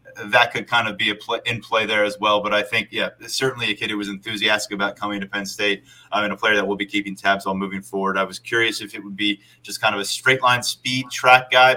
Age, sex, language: 20-39, male, English